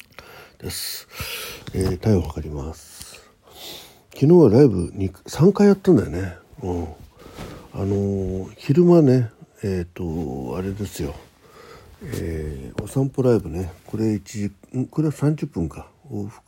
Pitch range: 85-115 Hz